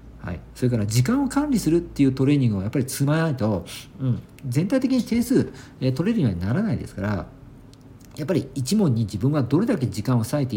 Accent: native